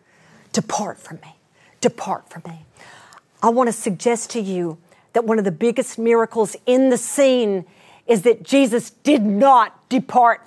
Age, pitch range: 40-59, 185-275 Hz